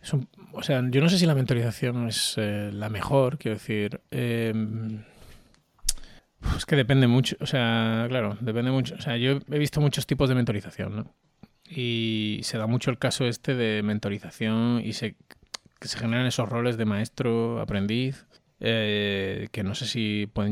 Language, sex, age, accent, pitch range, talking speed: Spanish, male, 20-39, Spanish, 110-130 Hz, 180 wpm